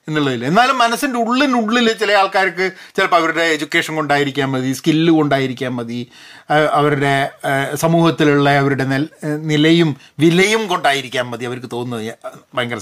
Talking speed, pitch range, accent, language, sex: 110 wpm, 125-205 Hz, native, Malayalam, male